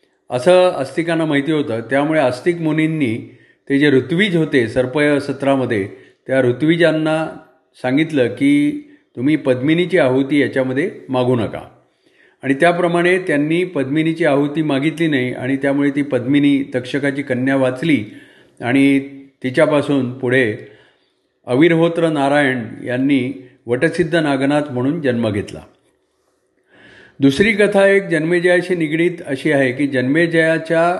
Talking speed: 110 wpm